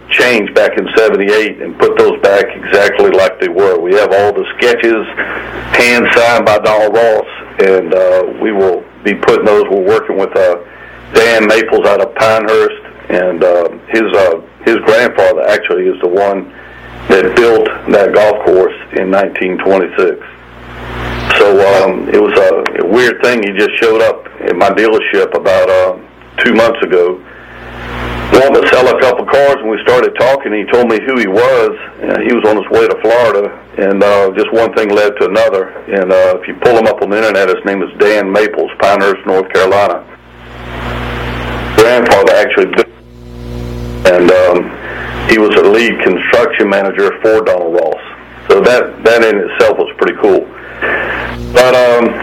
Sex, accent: male, American